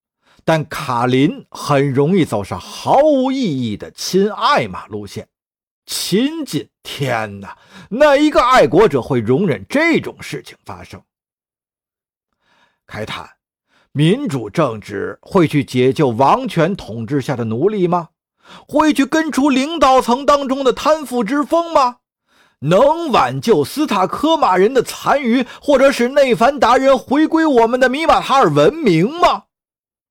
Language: Chinese